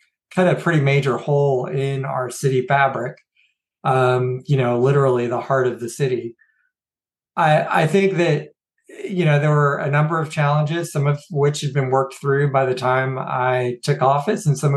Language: English